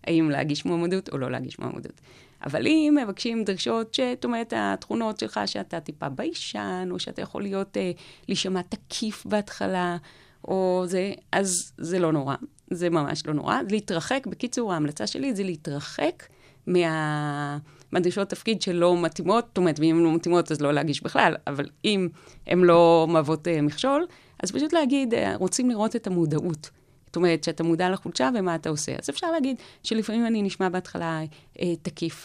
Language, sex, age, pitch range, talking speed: Hebrew, female, 30-49, 150-190 Hz, 165 wpm